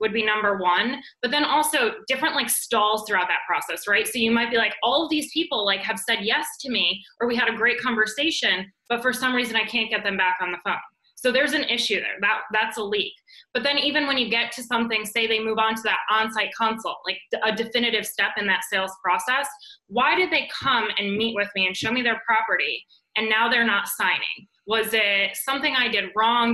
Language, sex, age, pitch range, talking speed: English, female, 20-39, 205-255 Hz, 235 wpm